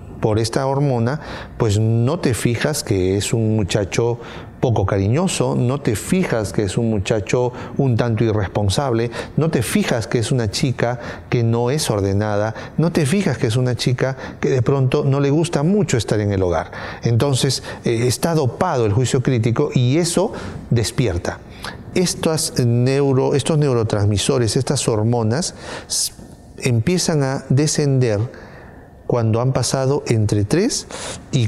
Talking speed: 145 wpm